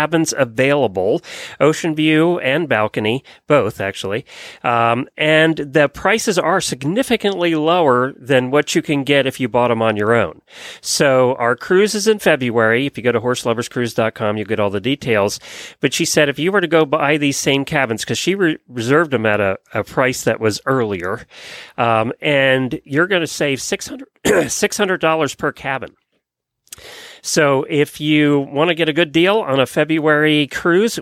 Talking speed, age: 175 wpm, 40-59